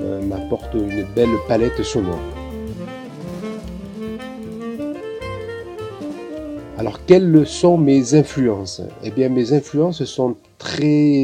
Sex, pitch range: male, 105-135 Hz